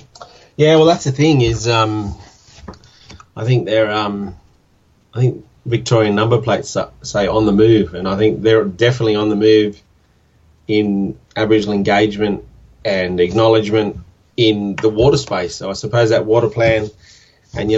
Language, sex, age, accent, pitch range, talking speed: English, male, 30-49, Australian, 105-120 Hz, 155 wpm